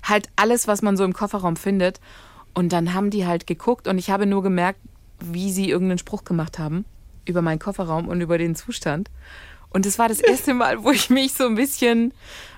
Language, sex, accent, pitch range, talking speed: German, female, German, 185-250 Hz, 210 wpm